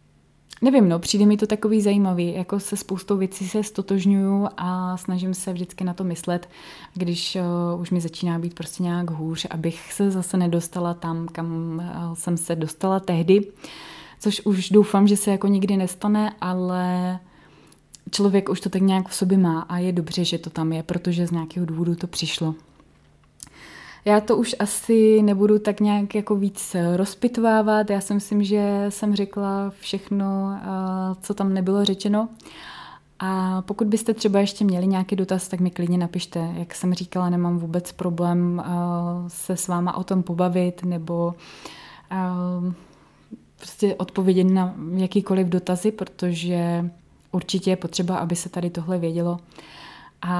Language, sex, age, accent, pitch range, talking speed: Czech, female, 20-39, native, 175-205 Hz, 150 wpm